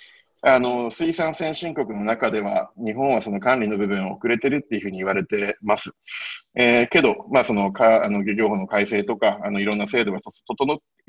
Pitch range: 105-145 Hz